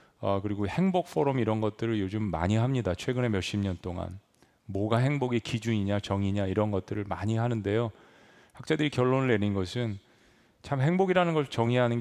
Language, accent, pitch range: Korean, native, 100-135 Hz